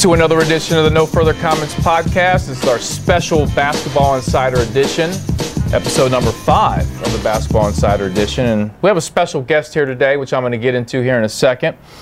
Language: English